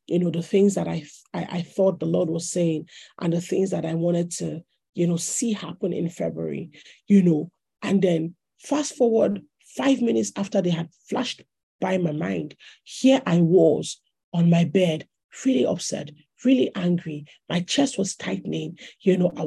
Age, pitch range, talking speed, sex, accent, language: 40-59, 165-195 Hz, 180 wpm, male, Nigerian, English